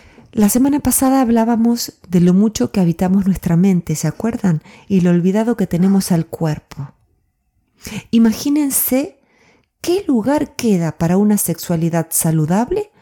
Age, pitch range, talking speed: 40-59, 165-230 Hz, 130 wpm